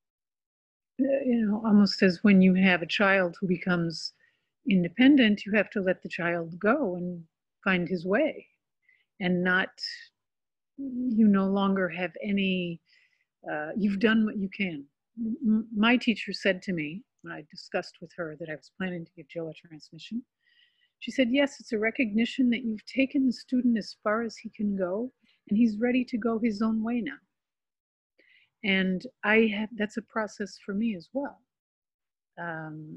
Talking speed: 165 wpm